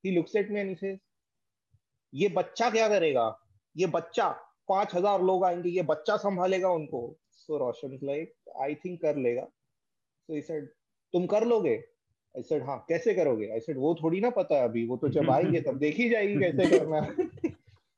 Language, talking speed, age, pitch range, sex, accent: English, 125 wpm, 30-49, 125-175 Hz, male, Indian